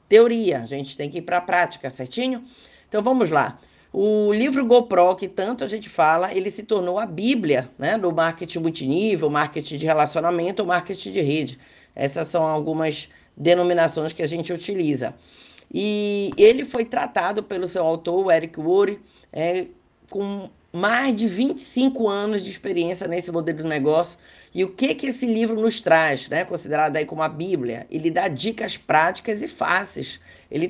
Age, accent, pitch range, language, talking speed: 20-39, Brazilian, 165-220 Hz, Portuguese, 165 wpm